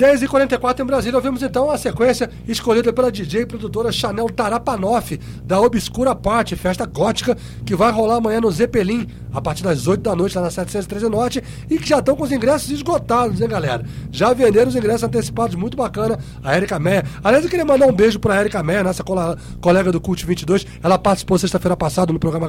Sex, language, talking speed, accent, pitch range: male, English, 205 wpm, Brazilian, 180-235 Hz